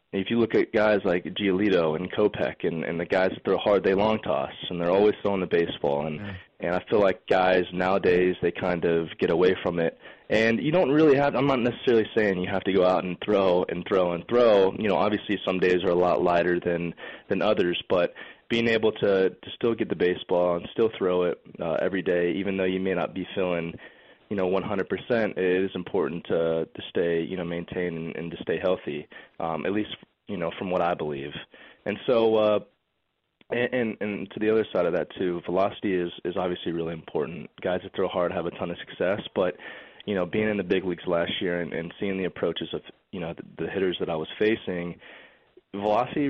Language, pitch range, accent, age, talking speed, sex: English, 90-105 Hz, American, 20-39, 225 wpm, male